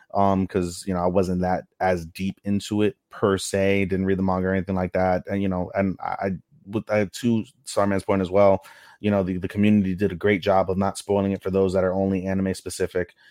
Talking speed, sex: 245 wpm, male